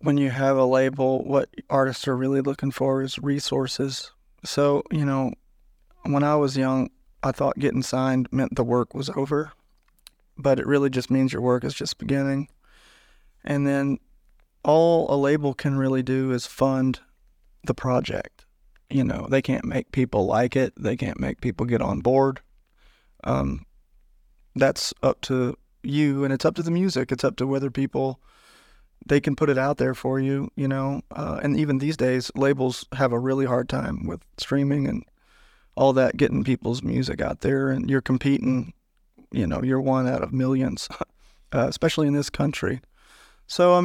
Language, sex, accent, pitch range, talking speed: English, male, American, 125-140 Hz, 180 wpm